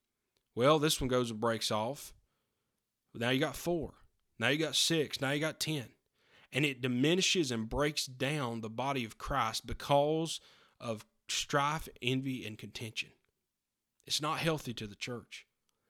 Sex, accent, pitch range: male, American, 120-160 Hz